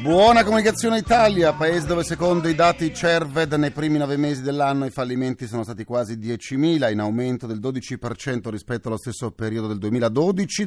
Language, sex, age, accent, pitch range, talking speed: Italian, male, 40-59, native, 100-145 Hz, 170 wpm